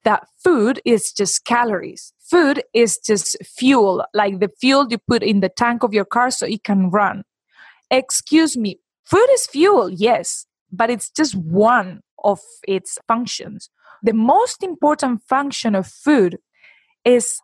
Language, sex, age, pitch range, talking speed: English, female, 20-39, 215-310 Hz, 150 wpm